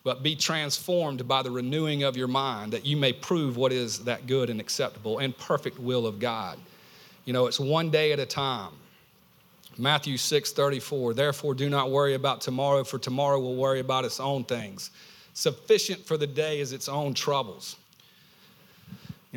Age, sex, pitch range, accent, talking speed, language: 40-59, male, 125-150 Hz, American, 180 wpm, English